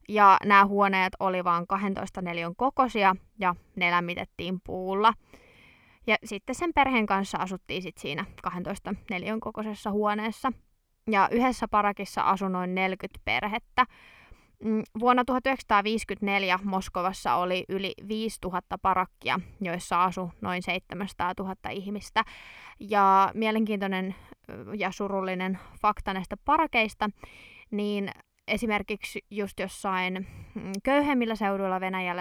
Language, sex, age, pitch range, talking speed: Finnish, female, 20-39, 185-215 Hz, 110 wpm